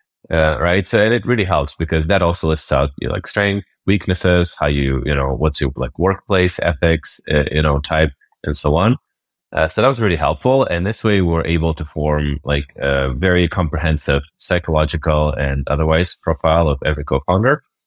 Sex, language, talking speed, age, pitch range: male, English, 195 wpm, 30-49, 75-90 Hz